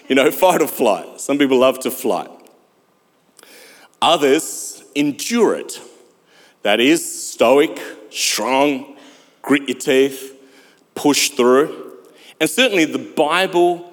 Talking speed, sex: 110 wpm, male